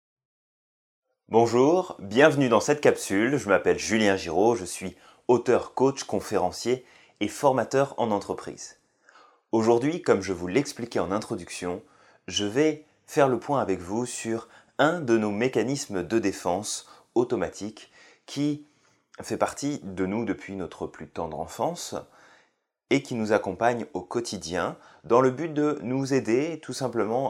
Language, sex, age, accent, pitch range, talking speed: French, male, 30-49, French, 95-130 Hz, 140 wpm